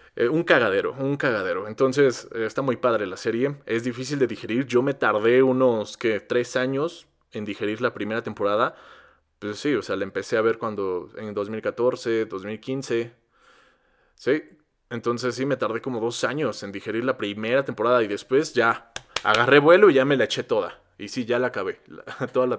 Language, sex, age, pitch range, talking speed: Spanish, male, 20-39, 115-145 Hz, 190 wpm